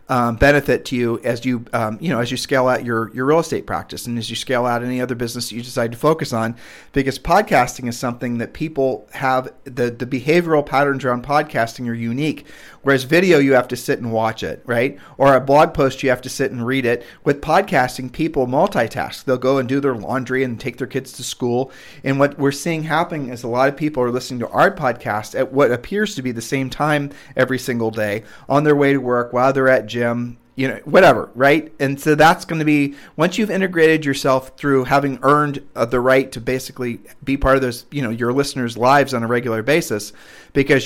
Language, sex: English, male